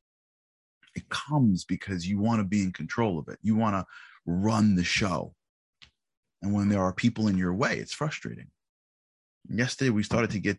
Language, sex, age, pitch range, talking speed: English, male, 30-49, 85-115 Hz, 180 wpm